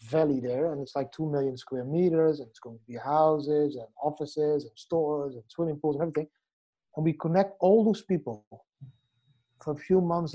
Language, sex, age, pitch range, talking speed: English, male, 30-49, 135-165 Hz, 195 wpm